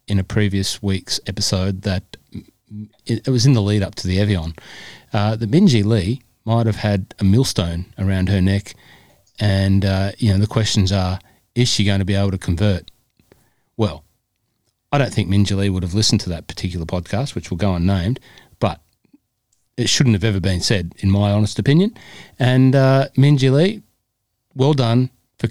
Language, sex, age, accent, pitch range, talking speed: English, male, 40-59, Australian, 95-125 Hz, 180 wpm